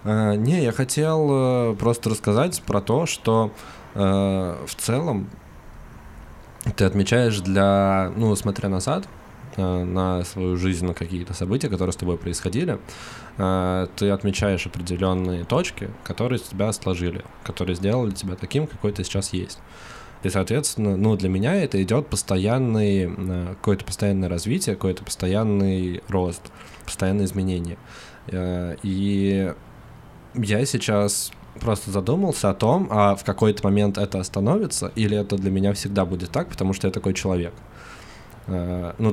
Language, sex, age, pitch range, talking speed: Russian, male, 20-39, 95-110 Hz, 125 wpm